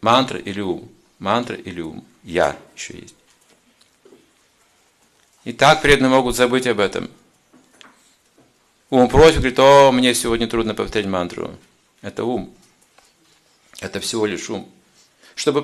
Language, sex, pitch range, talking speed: Russian, male, 130-175 Hz, 125 wpm